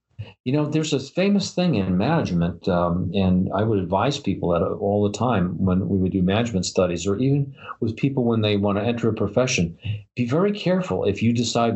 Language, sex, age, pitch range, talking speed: English, male, 50-69, 95-120 Hz, 210 wpm